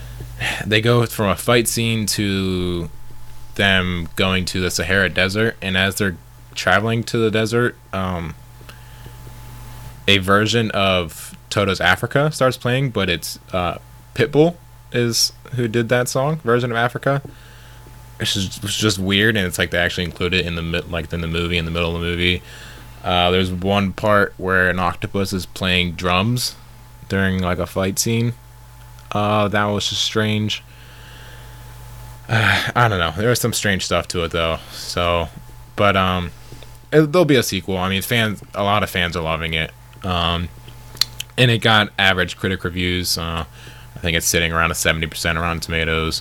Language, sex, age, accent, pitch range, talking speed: English, male, 20-39, American, 90-125 Hz, 170 wpm